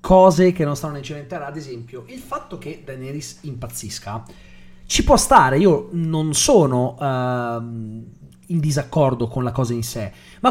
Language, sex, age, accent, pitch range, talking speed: Italian, male, 30-49, native, 125-185 Hz, 165 wpm